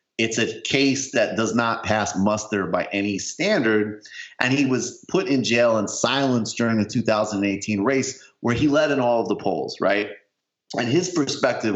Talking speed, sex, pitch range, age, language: 180 wpm, male, 100-120 Hz, 30-49, English